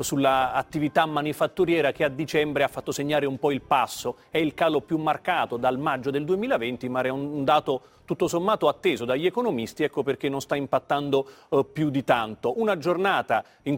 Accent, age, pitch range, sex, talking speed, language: native, 40-59, 135-160 Hz, male, 185 wpm, Italian